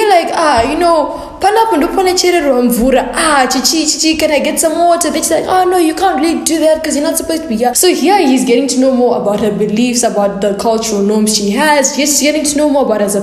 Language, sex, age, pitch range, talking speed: English, female, 10-29, 210-295 Hz, 225 wpm